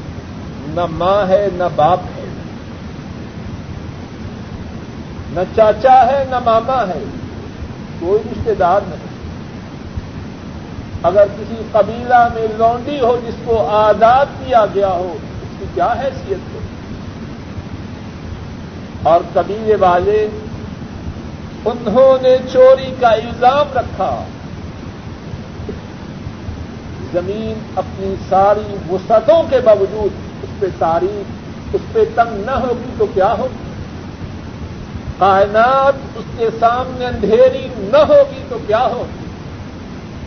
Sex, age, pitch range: male, 60-79, 180-265 Hz